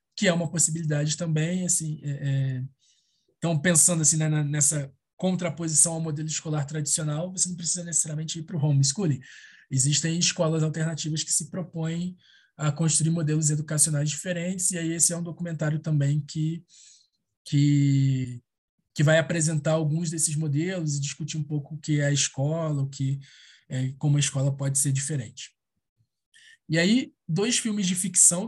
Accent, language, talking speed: Brazilian, Portuguese, 160 wpm